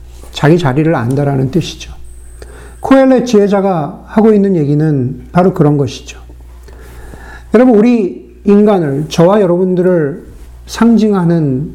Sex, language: male, Korean